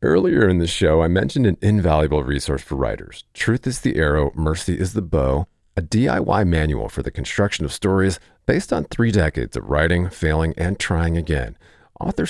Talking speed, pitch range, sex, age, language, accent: 185 wpm, 80-105 Hz, male, 40-59, English, American